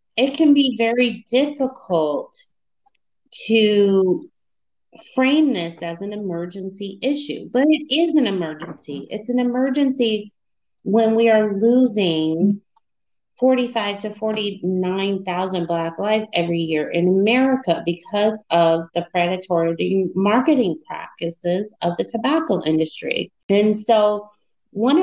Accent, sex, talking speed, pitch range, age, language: American, female, 110 wpm, 170-225 Hz, 30-49, English